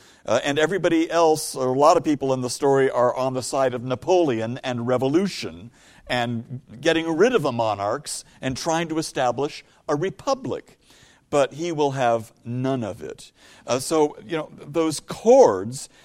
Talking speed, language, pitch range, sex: 170 wpm, English, 125-185 Hz, male